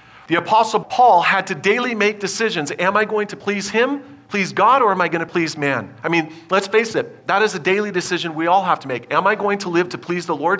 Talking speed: 265 wpm